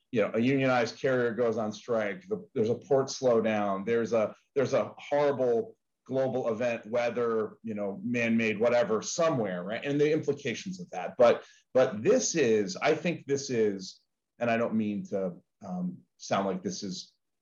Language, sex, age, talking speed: English, male, 40-59, 170 wpm